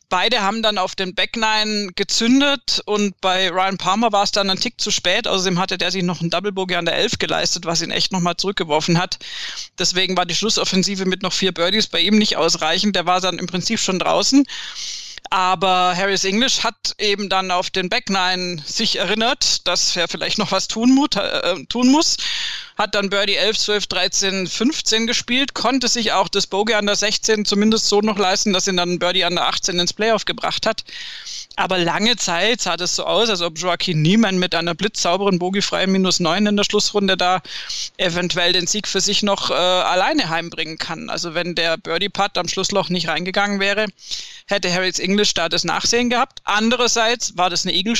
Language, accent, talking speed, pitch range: German, German, 195 wpm, 180-210 Hz